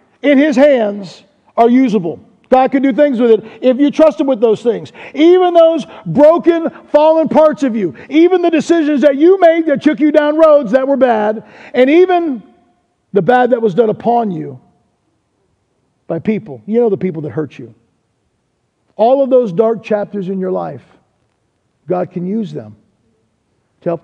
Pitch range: 180-265 Hz